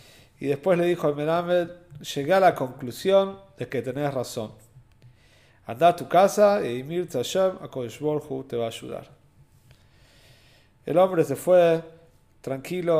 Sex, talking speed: male, 140 wpm